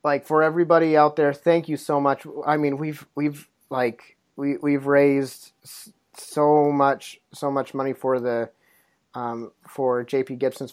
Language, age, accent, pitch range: English, 30-49, American, 130-150 Hz